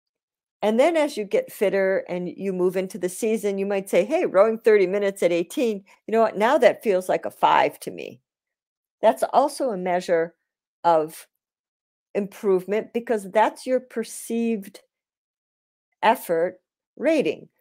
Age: 50-69